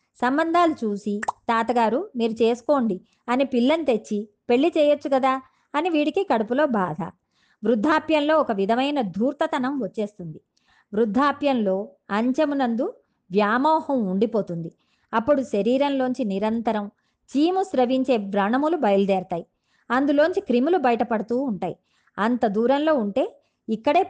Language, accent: Telugu, native